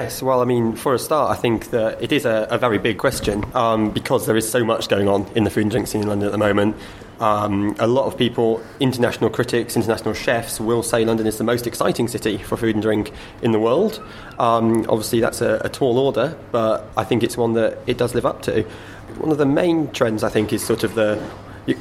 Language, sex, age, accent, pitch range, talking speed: English, male, 20-39, British, 105-120 Hz, 245 wpm